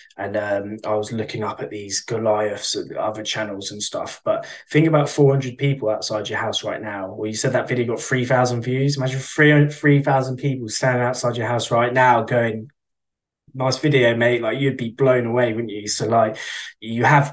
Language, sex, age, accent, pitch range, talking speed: English, male, 20-39, British, 110-135 Hz, 205 wpm